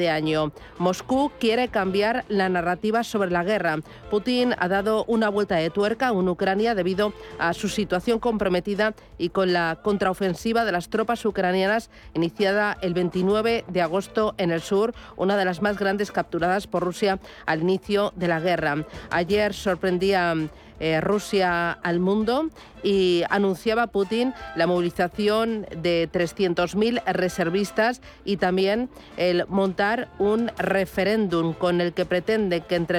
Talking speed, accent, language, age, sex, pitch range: 145 wpm, Spanish, Spanish, 40-59, female, 175-215 Hz